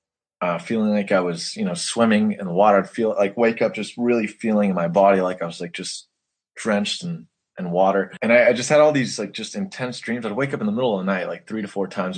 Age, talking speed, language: 20-39, 265 wpm, English